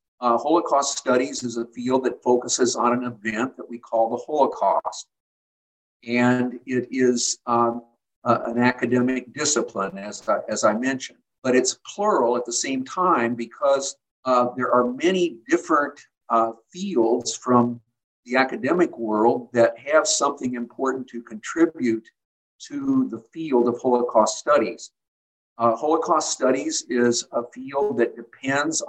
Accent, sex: American, male